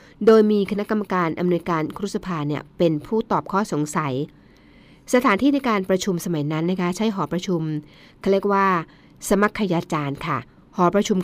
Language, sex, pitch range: Thai, female, 160-205 Hz